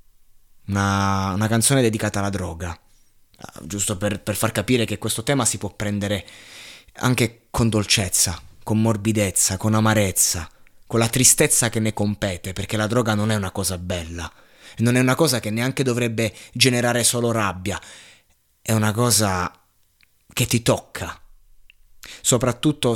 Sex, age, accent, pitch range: male, 20-39, native, 100-120 Hz